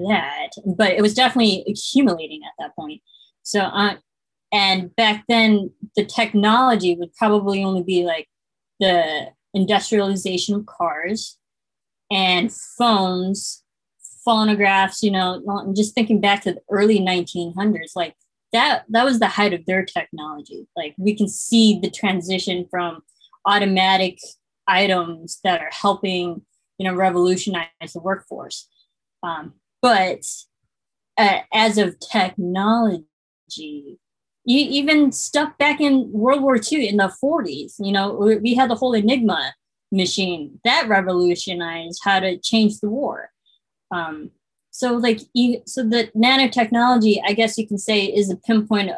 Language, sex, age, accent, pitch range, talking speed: English, female, 20-39, American, 185-225 Hz, 135 wpm